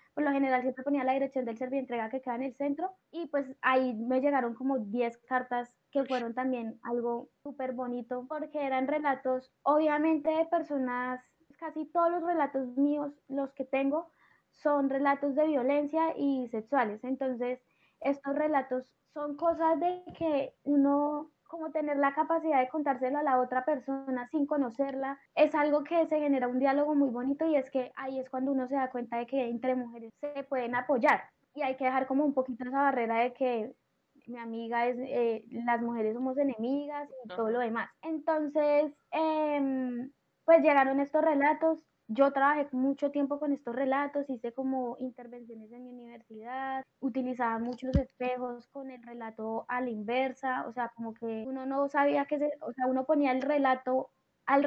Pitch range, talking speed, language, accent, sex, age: 245-285 Hz, 180 wpm, Spanish, Colombian, female, 10-29